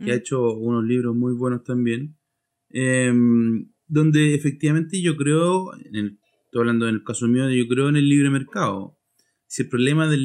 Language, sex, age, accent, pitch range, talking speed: Spanish, male, 20-39, Argentinian, 115-135 Hz, 180 wpm